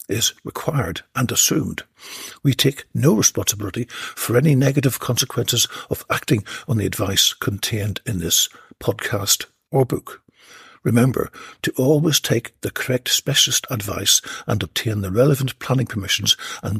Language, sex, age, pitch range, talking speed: English, male, 60-79, 110-180 Hz, 135 wpm